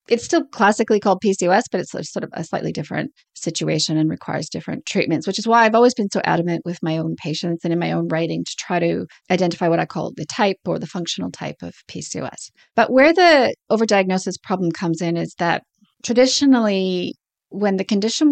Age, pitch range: 30-49, 170-205 Hz